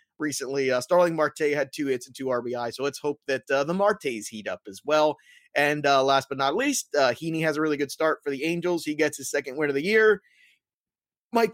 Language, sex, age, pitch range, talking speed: English, male, 30-49, 135-170 Hz, 240 wpm